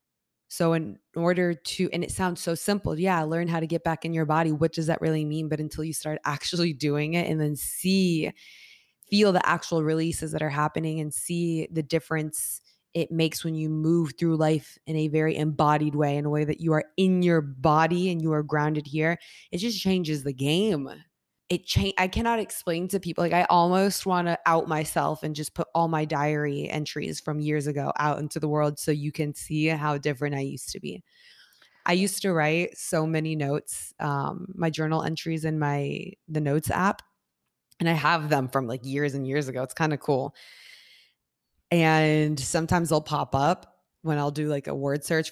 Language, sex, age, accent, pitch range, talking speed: English, female, 20-39, American, 150-170 Hz, 205 wpm